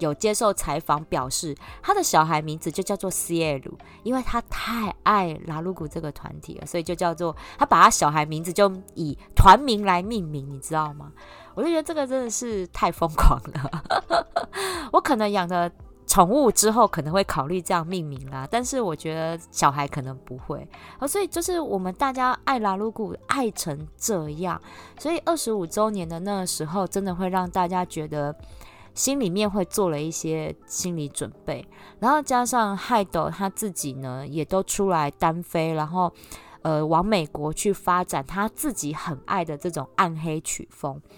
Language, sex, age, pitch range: Chinese, female, 20-39, 155-210 Hz